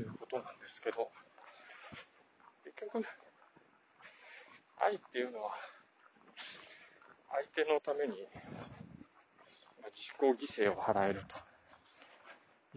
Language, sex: Japanese, male